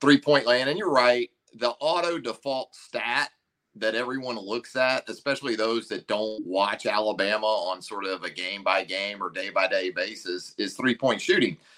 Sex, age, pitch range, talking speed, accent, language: male, 40-59, 110-140 Hz, 160 wpm, American, English